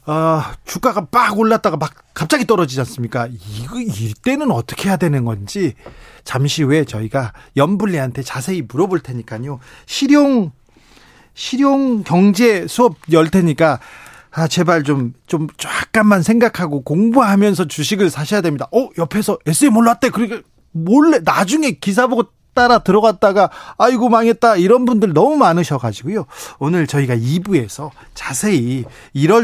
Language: Korean